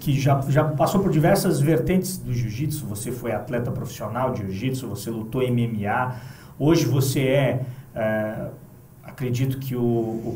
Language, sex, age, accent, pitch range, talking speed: Portuguese, male, 40-59, Brazilian, 125-160 Hz, 150 wpm